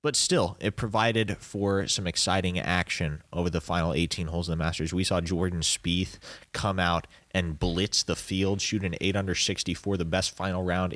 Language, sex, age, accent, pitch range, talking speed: English, male, 20-39, American, 85-105 Hz, 190 wpm